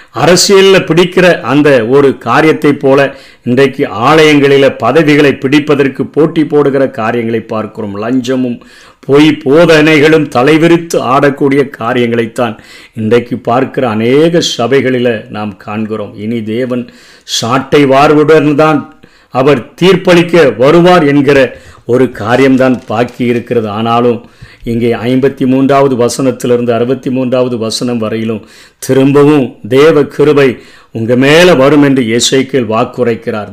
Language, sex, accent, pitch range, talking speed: Tamil, male, native, 120-150 Hz, 100 wpm